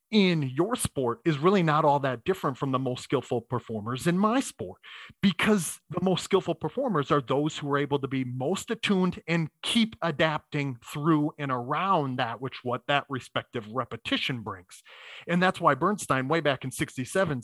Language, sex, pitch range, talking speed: English, male, 135-180 Hz, 180 wpm